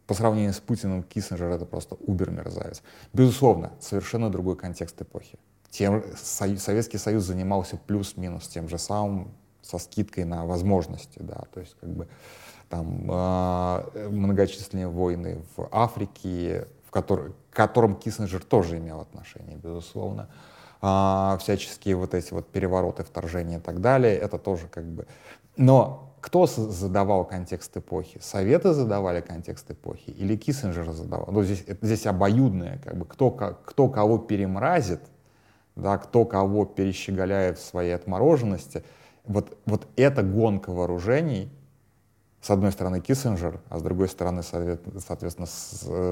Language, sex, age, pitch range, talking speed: Russian, male, 30-49, 90-105 Hz, 130 wpm